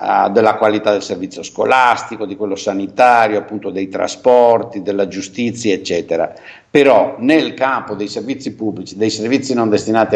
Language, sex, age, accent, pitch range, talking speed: Italian, male, 60-79, native, 105-145 Hz, 140 wpm